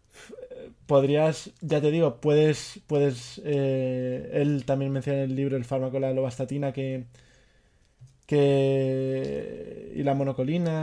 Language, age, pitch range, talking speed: Spanish, 20-39, 135-155 Hz, 120 wpm